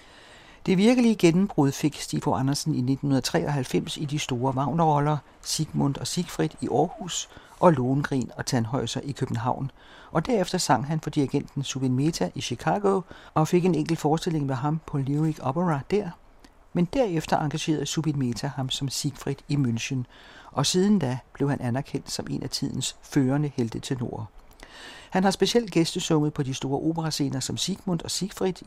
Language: Danish